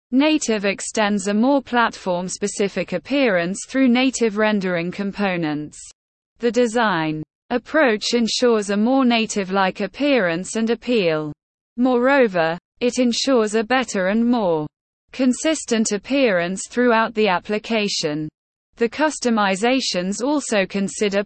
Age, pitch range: 20-39, 185-245 Hz